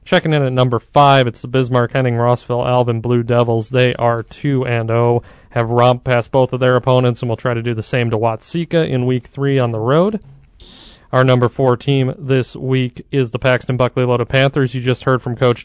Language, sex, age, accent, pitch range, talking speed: English, male, 30-49, American, 120-140 Hz, 200 wpm